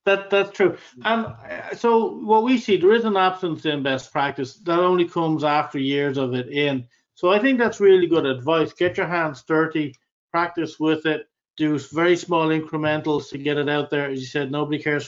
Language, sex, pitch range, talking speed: English, male, 145-170 Hz, 205 wpm